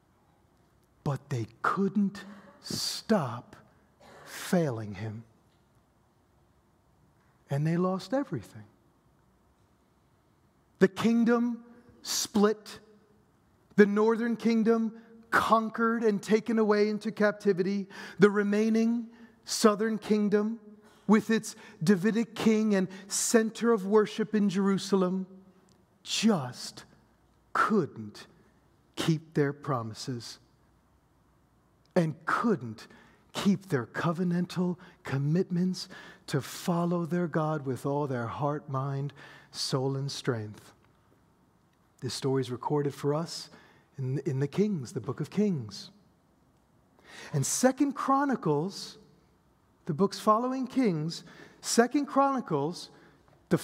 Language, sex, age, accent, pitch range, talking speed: English, male, 40-59, American, 145-215 Hz, 95 wpm